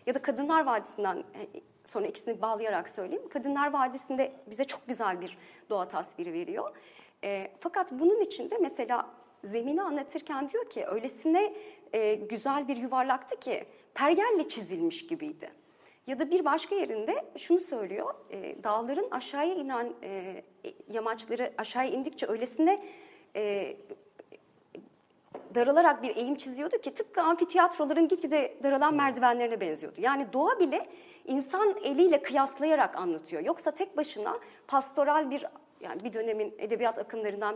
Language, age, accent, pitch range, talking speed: Turkish, 40-59, native, 250-360 Hz, 130 wpm